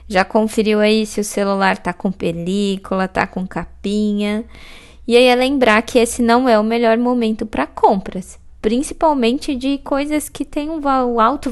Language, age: Portuguese, 20-39